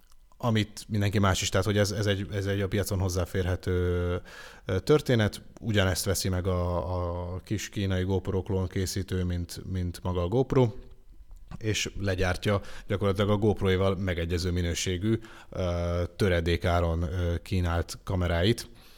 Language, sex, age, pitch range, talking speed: Hungarian, male, 30-49, 90-105 Hz, 125 wpm